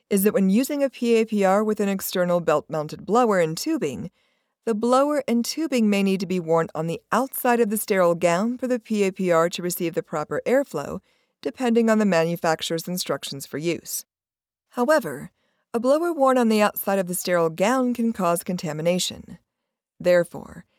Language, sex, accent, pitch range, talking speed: English, female, American, 170-235 Hz, 170 wpm